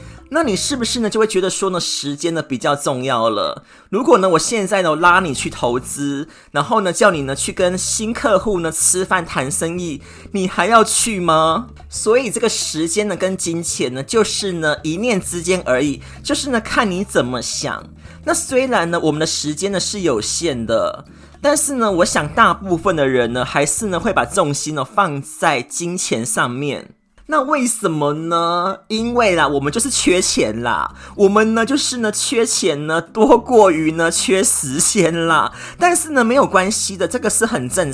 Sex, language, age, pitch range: male, Chinese, 20-39, 155-220 Hz